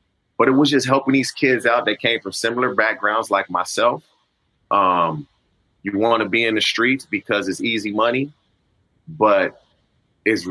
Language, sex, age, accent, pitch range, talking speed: English, male, 30-49, American, 105-130 Hz, 165 wpm